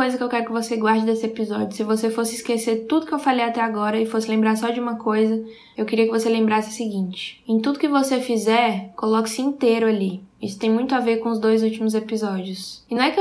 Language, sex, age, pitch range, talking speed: English, female, 10-29, 215-250 Hz, 250 wpm